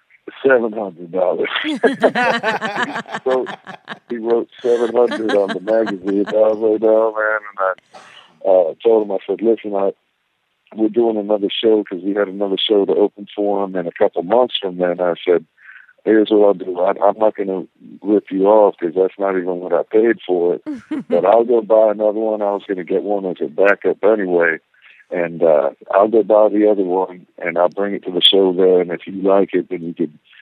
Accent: American